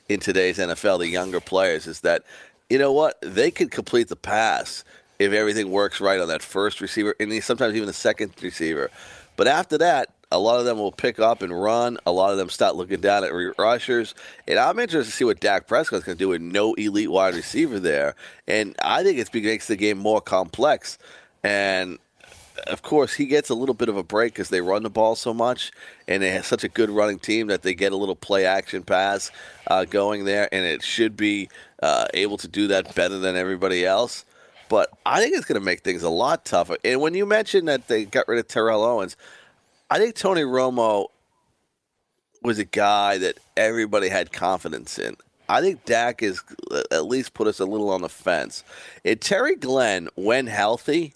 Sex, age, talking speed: male, 30-49, 210 wpm